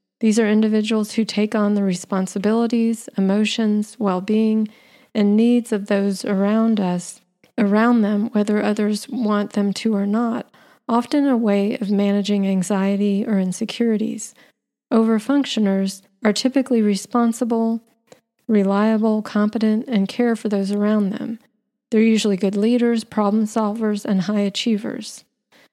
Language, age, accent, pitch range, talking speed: English, 40-59, American, 195-225 Hz, 125 wpm